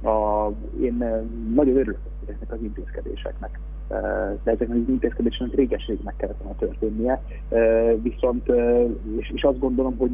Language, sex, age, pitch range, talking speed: Hungarian, male, 30-49, 105-120 Hz, 125 wpm